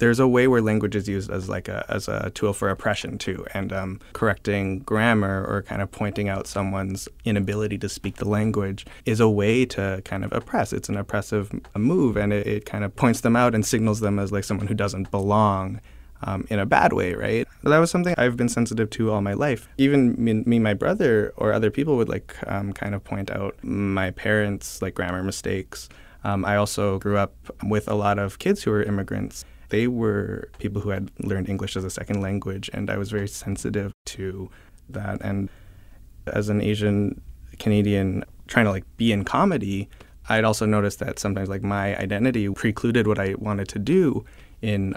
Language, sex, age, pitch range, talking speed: English, male, 20-39, 95-105 Hz, 205 wpm